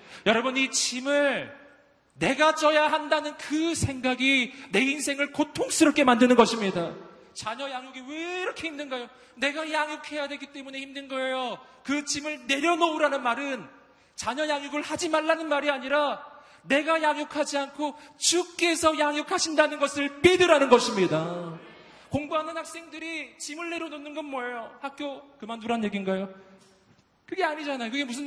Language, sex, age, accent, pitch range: Korean, male, 40-59, native, 255-315 Hz